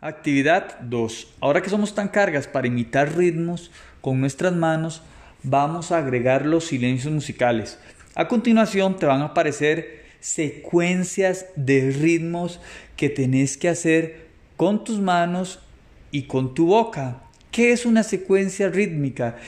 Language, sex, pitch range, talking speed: Spanish, male, 135-185 Hz, 135 wpm